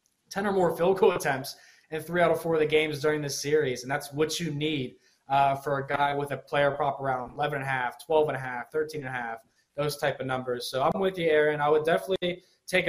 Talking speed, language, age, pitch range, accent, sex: 260 wpm, English, 20-39, 135-165 Hz, American, male